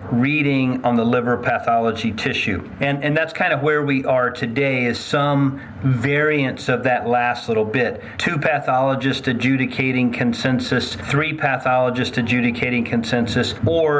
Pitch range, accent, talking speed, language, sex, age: 120-140 Hz, American, 135 wpm, English, male, 40-59